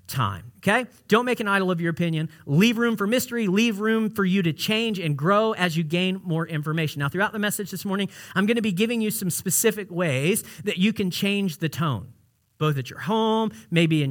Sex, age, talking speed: male, 40-59, 225 wpm